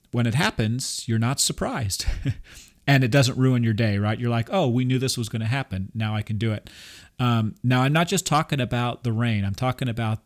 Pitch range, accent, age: 110-130 Hz, American, 40-59